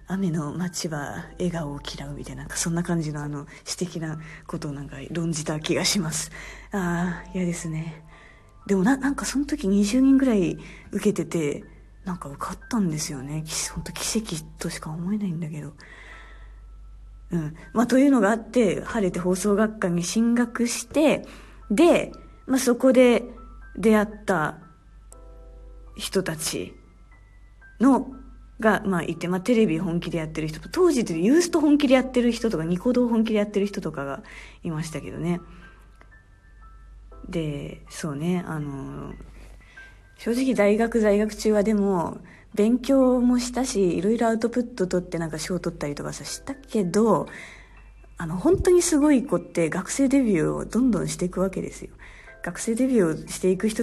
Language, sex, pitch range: Japanese, female, 160-230 Hz